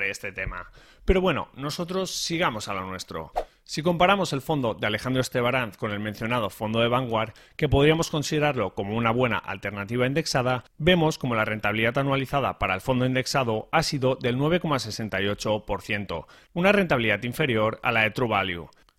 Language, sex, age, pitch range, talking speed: Spanish, male, 30-49, 115-155 Hz, 160 wpm